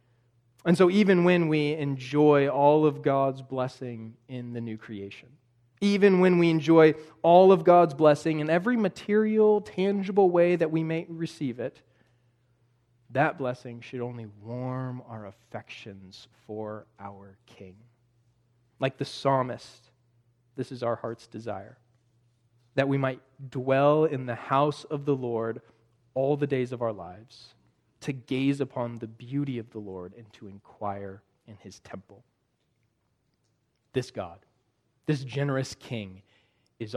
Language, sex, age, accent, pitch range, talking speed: English, male, 20-39, American, 115-145 Hz, 140 wpm